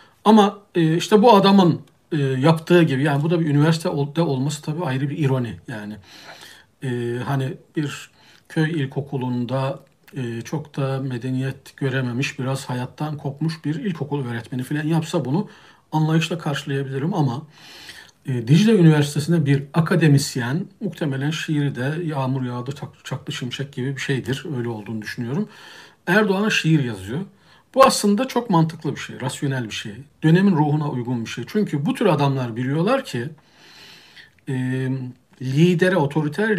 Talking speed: 135 wpm